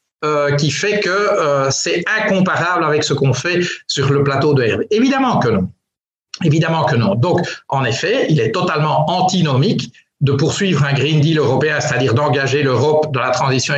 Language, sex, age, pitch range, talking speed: French, male, 50-69, 140-185 Hz, 180 wpm